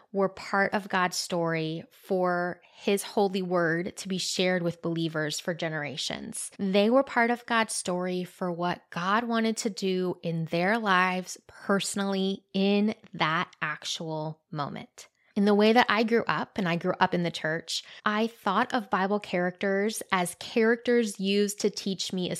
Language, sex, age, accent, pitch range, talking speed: English, female, 20-39, American, 175-210 Hz, 165 wpm